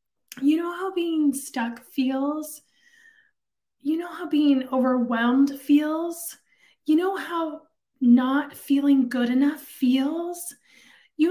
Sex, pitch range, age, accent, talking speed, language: female, 240-290 Hz, 20-39, American, 110 wpm, English